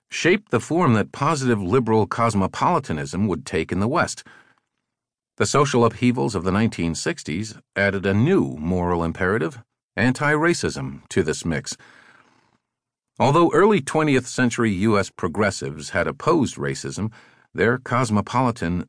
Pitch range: 95-130 Hz